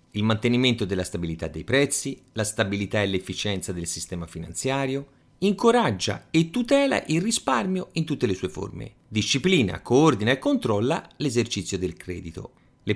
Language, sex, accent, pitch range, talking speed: Italian, male, native, 100-165 Hz, 145 wpm